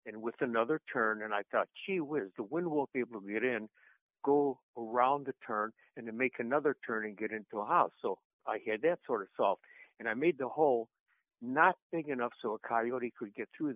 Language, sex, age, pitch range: English, male, 60-79, 105-130 Hz